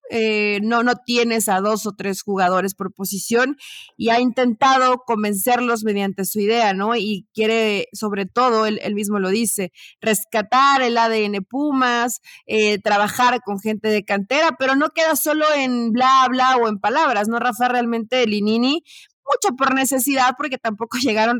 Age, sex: 30-49, female